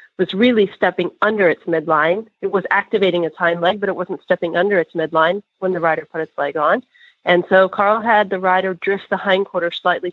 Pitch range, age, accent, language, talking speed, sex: 170-195 Hz, 40-59, American, English, 220 wpm, female